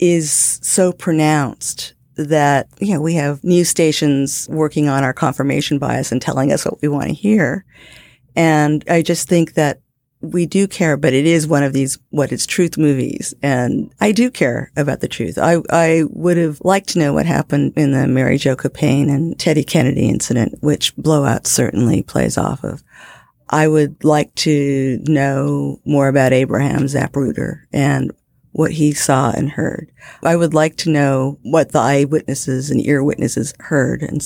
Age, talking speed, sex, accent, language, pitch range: 50-69, 175 wpm, female, American, English, 140-160 Hz